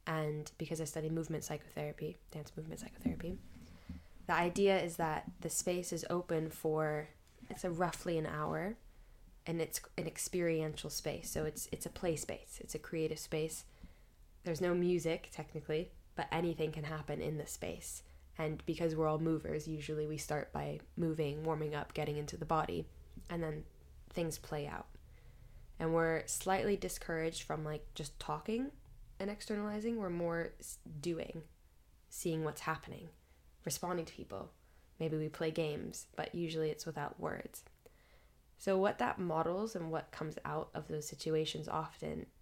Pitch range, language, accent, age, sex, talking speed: 150-170 Hz, English, American, 10-29, female, 155 wpm